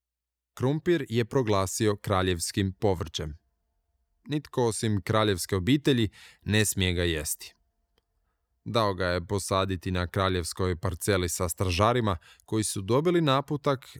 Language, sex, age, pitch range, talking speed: Croatian, male, 20-39, 70-115 Hz, 110 wpm